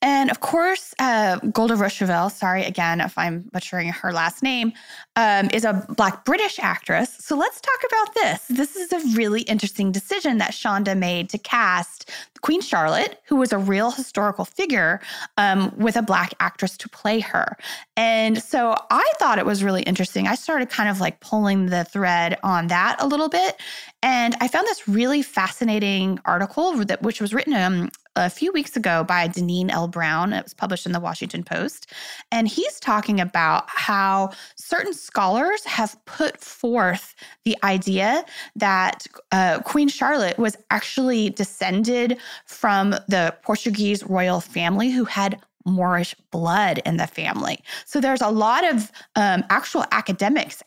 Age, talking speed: 20-39, 165 wpm